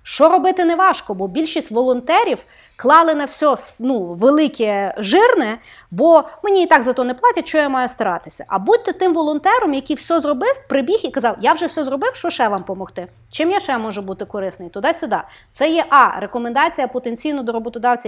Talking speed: 190 wpm